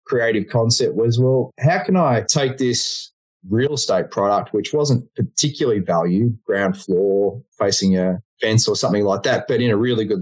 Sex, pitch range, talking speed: male, 105-140 Hz, 175 wpm